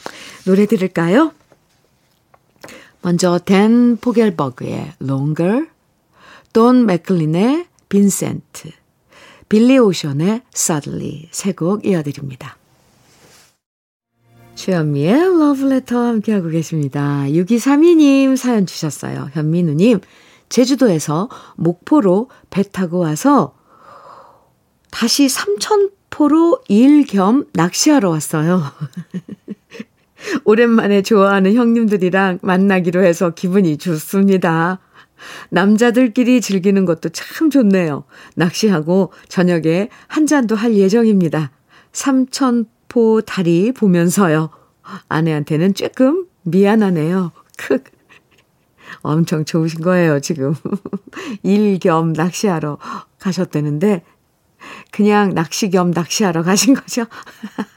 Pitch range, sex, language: 165-235 Hz, female, Korean